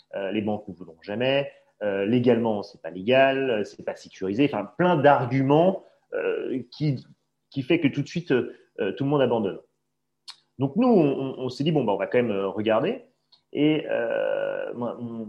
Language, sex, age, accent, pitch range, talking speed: French, male, 30-49, French, 110-150 Hz, 170 wpm